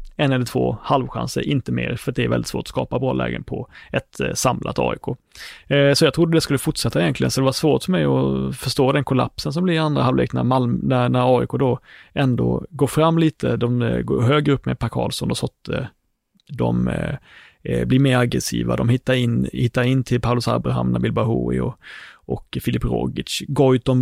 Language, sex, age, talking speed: Swedish, male, 30-49, 190 wpm